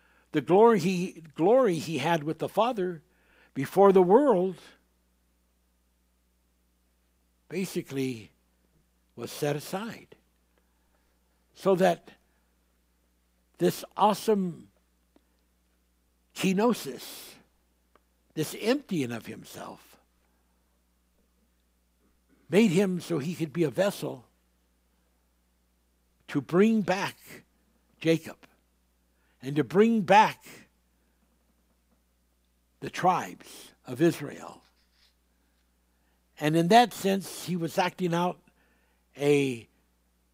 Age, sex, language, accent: 60-79, male, English, American